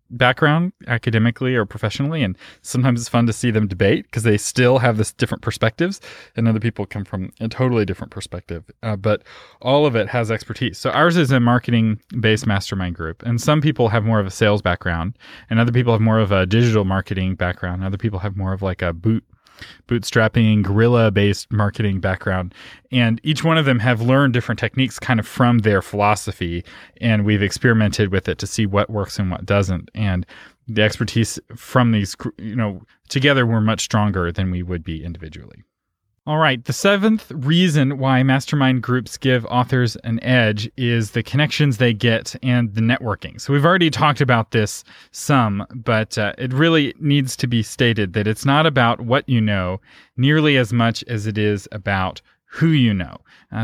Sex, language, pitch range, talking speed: male, English, 105-125 Hz, 190 wpm